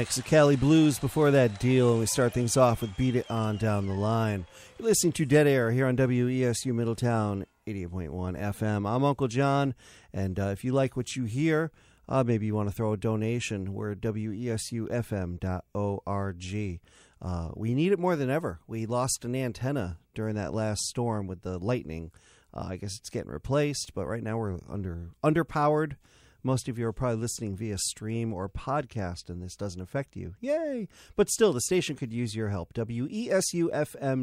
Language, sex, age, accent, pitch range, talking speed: English, male, 40-59, American, 105-140 Hz, 185 wpm